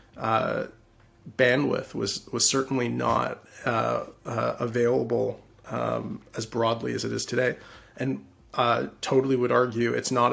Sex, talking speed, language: male, 135 wpm, English